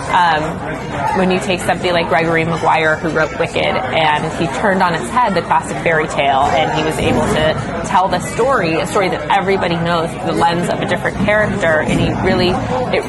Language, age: English, 20-39